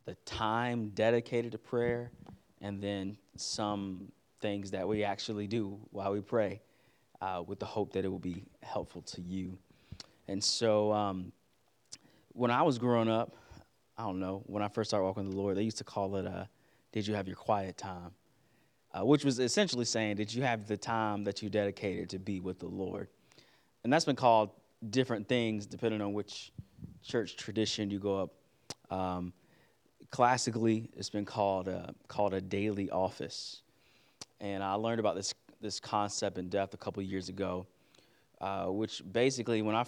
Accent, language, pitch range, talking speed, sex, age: American, English, 95-110 Hz, 180 wpm, male, 20-39